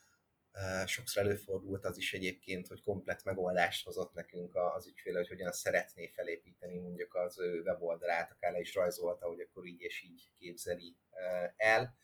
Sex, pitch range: male, 90-115 Hz